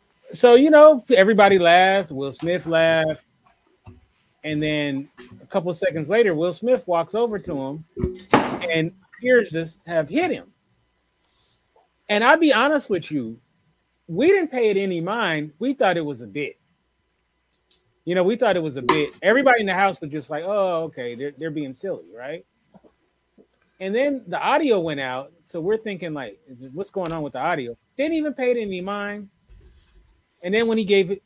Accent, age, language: American, 30-49, English